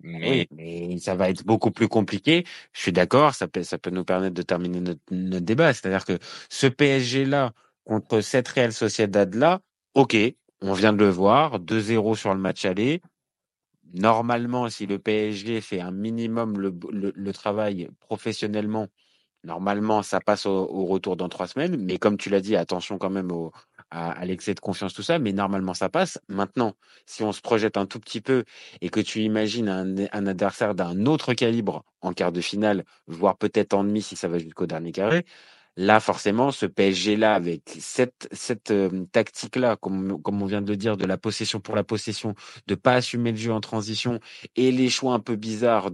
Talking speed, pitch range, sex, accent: 195 wpm, 95-115 Hz, male, French